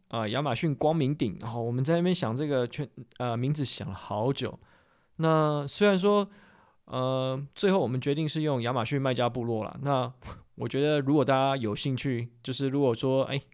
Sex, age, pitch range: male, 20-39, 120-150 Hz